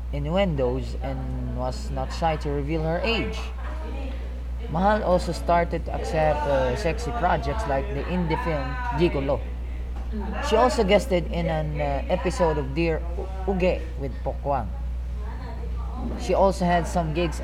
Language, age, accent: Filipino, 20-39, native